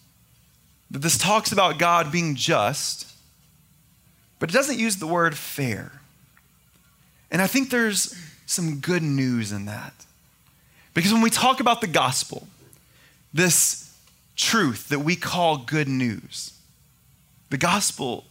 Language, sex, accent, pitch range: English, male, American, 165-255 Hz